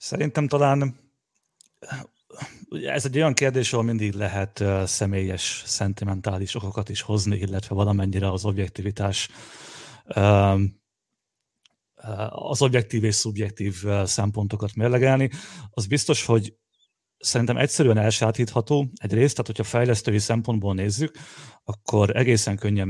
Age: 30-49